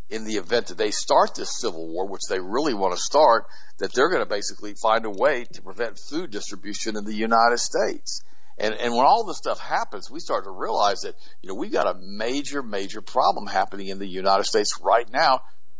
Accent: American